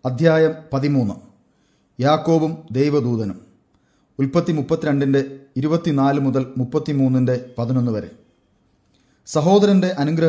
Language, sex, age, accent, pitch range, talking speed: English, male, 40-59, Indian, 130-155 Hz, 105 wpm